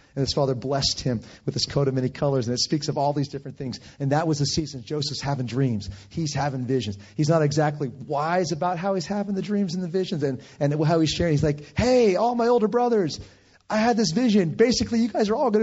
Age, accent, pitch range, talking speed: 30-49, American, 135-195 Hz, 250 wpm